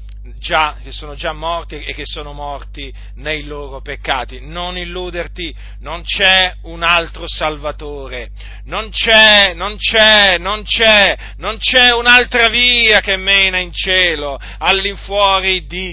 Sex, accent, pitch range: male, native, 155-225 Hz